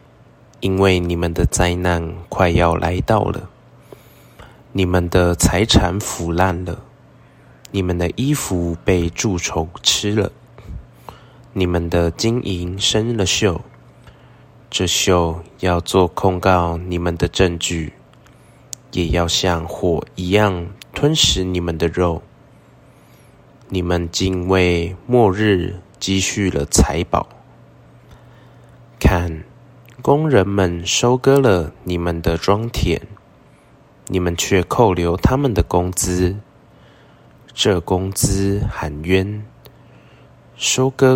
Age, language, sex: 20-39, Chinese, male